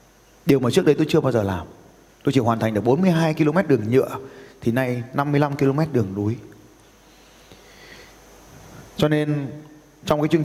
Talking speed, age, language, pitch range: 165 wpm, 20-39, Vietnamese, 120-155 Hz